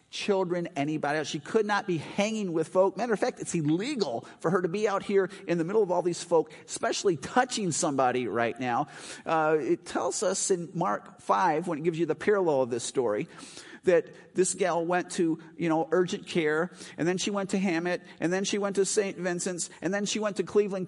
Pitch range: 170-225 Hz